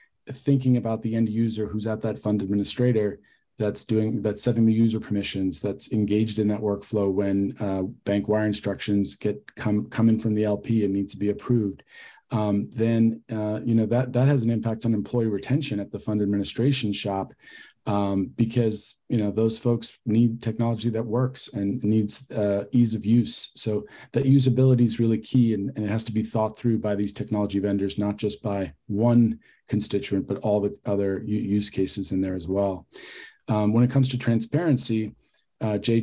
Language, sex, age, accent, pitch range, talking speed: English, male, 40-59, American, 100-115 Hz, 190 wpm